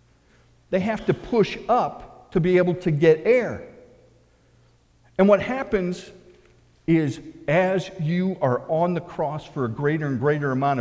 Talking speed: 150 wpm